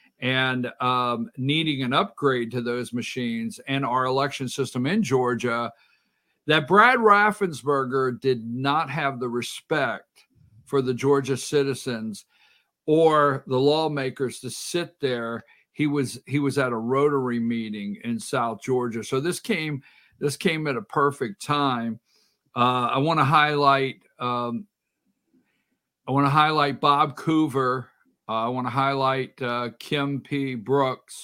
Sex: male